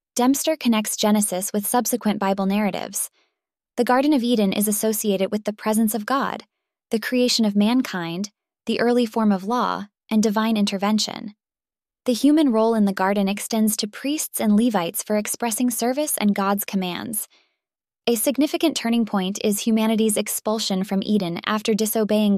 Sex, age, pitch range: female, 10-29, 205-235 Hz